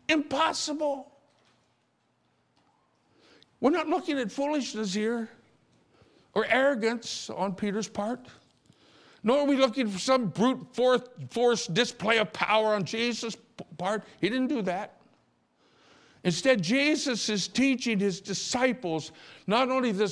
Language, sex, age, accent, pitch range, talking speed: English, male, 60-79, American, 165-250 Hz, 115 wpm